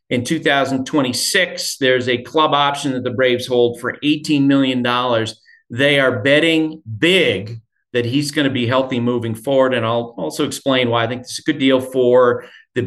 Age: 40-59